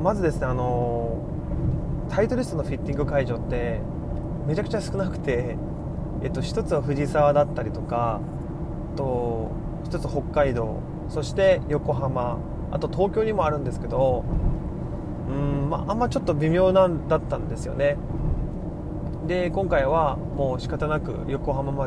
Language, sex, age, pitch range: Japanese, male, 20-39, 125-160 Hz